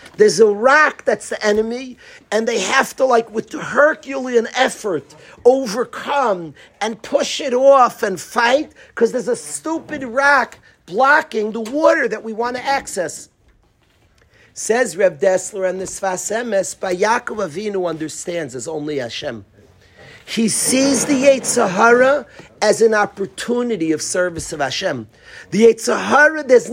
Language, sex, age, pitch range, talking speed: English, male, 50-69, 190-270 Hz, 140 wpm